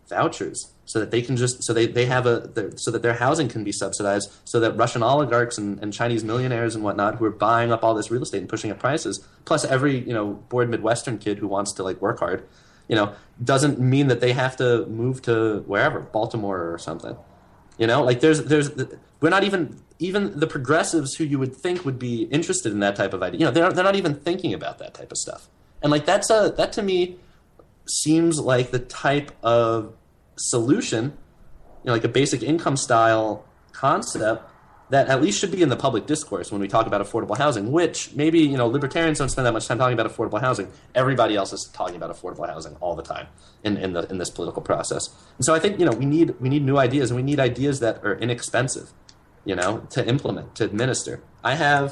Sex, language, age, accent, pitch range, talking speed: male, English, 20-39, American, 110-150 Hz, 230 wpm